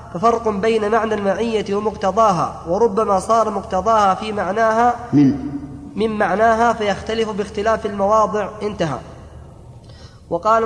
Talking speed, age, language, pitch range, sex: 100 wpm, 20-39, Arabic, 200-225 Hz, female